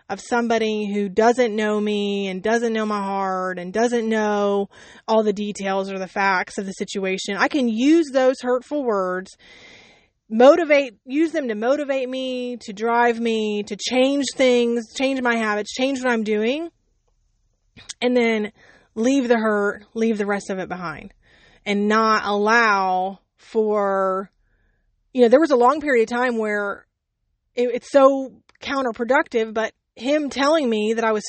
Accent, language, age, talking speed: American, English, 30-49, 160 wpm